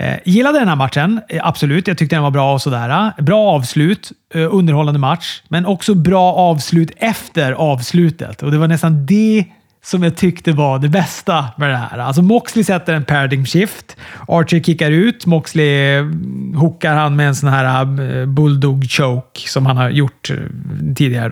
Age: 30-49